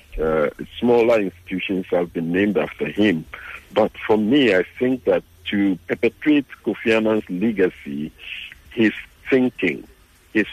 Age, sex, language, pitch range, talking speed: 60-79, male, English, 90-115 Hz, 125 wpm